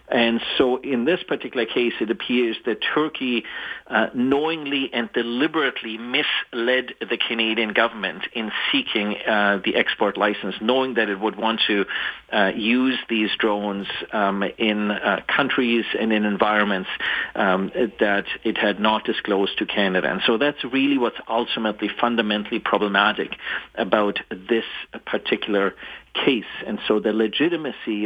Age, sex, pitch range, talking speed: 40-59, male, 105-120 Hz, 140 wpm